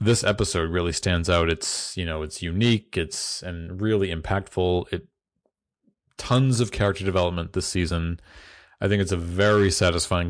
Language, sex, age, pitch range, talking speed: English, male, 30-49, 85-115 Hz, 155 wpm